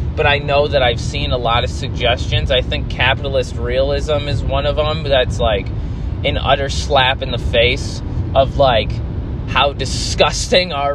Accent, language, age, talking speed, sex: American, English, 20-39, 170 wpm, male